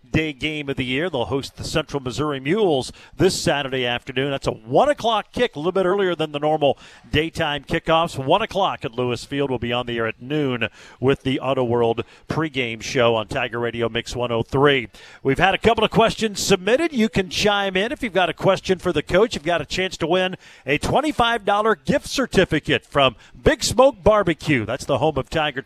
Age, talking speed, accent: 50-69, 210 wpm, American